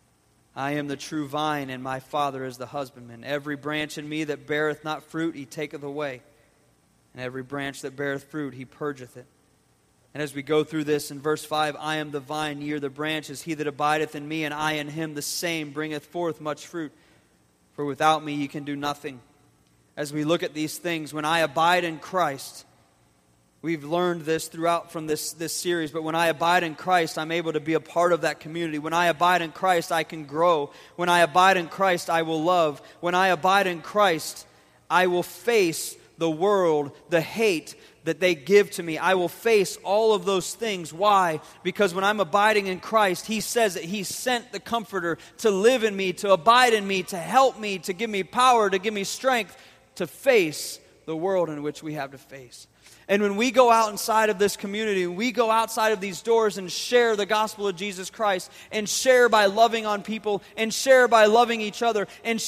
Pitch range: 150-210 Hz